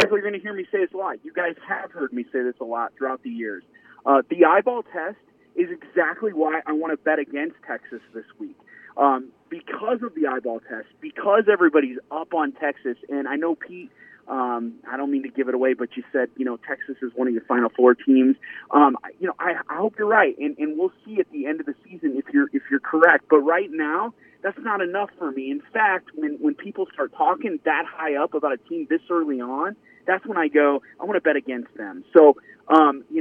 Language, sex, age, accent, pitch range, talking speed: English, male, 30-49, American, 130-195 Hz, 235 wpm